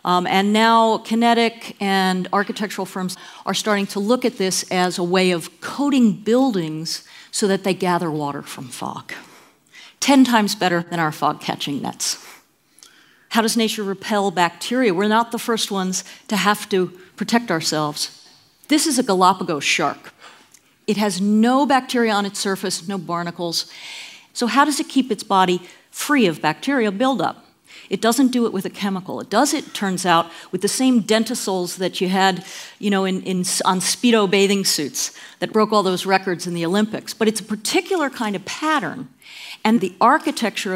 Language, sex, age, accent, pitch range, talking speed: English, female, 50-69, American, 185-230 Hz, 175 wpm